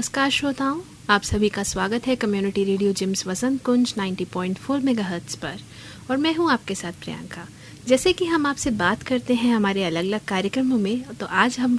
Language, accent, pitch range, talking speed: Hindi, native, 195-250 Hz, 185 wpm